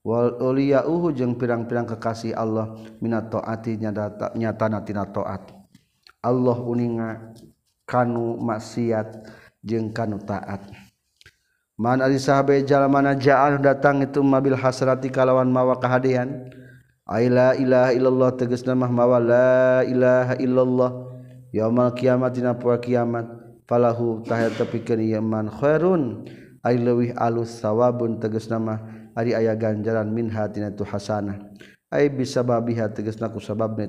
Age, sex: 40-59, male